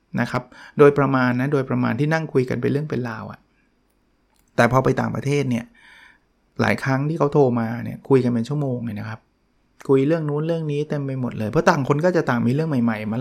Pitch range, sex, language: 125-155 Hz, male, Thai